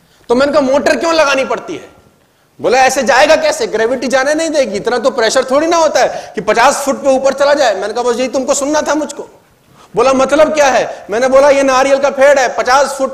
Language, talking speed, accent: Hindi, 190 wpm, native